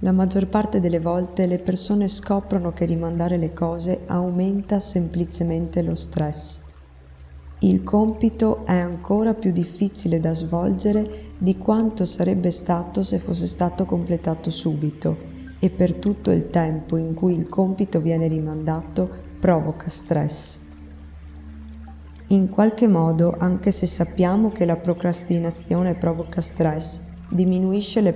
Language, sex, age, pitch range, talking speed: Italian, female, 20-39, 155-185 Hz, 125 wpm